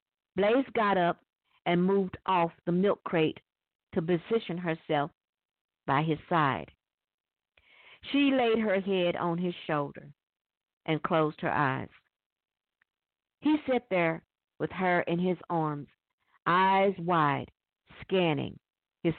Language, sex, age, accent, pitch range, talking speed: English, female, 50-69, American, 160-220 Hz, 120 wpm